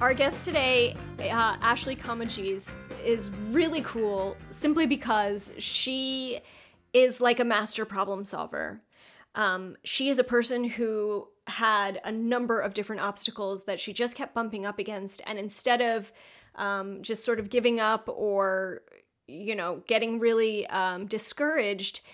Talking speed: 145 wpm